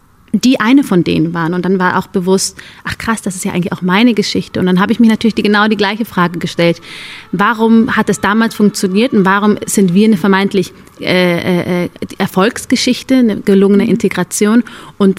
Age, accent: 30-49, German